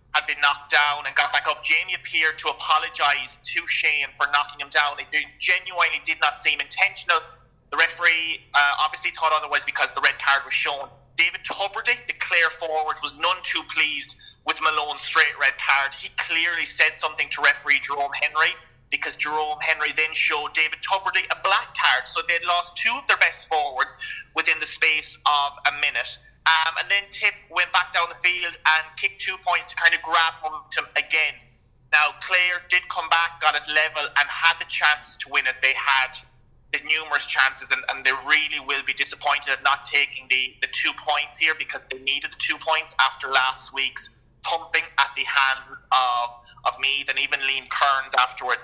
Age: 20-39